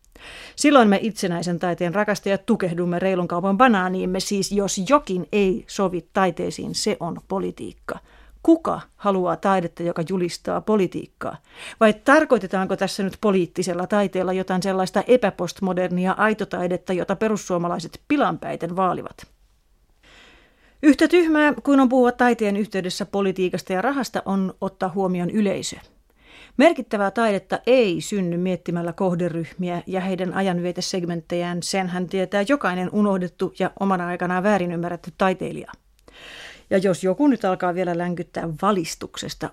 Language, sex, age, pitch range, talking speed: Finnish, female, 30-49, 180-205 Hz, 120 wpm